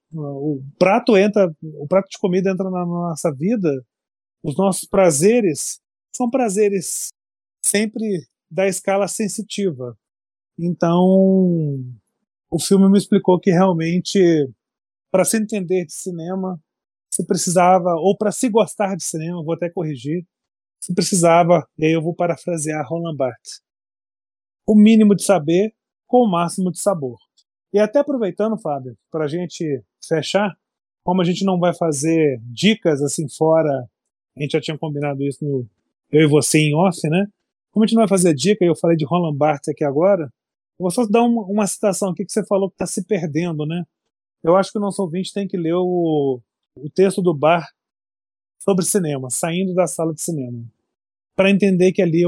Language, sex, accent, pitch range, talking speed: Portuguese, male, Brazilian, 155-195 Hz, 170 wpm